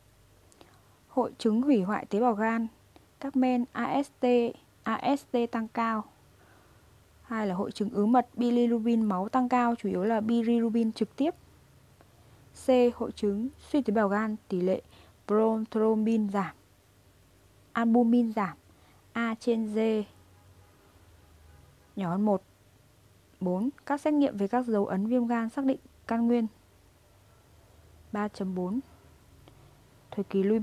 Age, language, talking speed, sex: 20-39, Vietnamese, 130 wpm, female